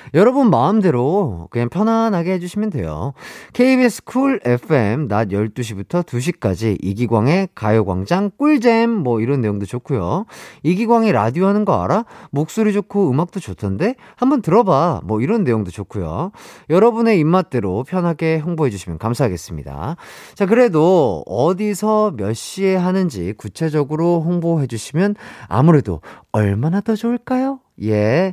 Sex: male